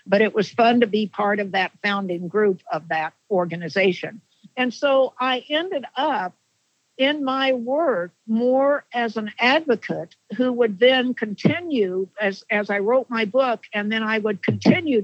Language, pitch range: English, 190-245 Hz